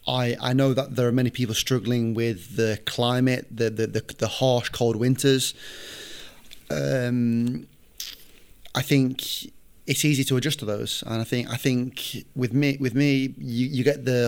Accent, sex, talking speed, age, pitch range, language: British, male, 170 wpm, 20-39, 115-135 Hz, Finnish